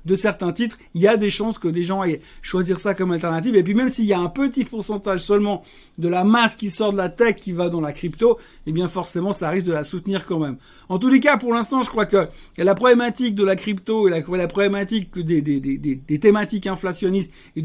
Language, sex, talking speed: French, male, 250 wpm